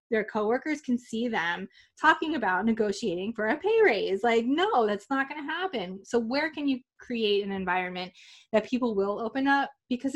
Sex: female